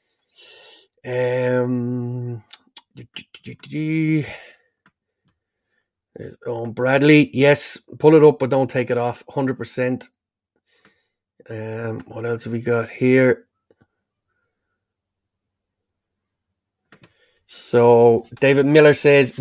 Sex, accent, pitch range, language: male, Irish, 120-145 Hz, English